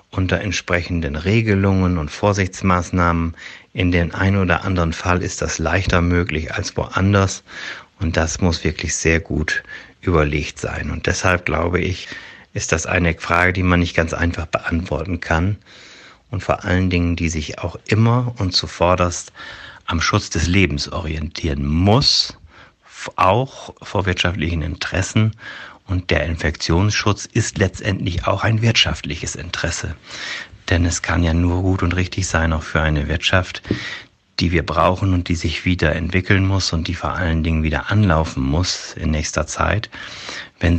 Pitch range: 80-95 Hz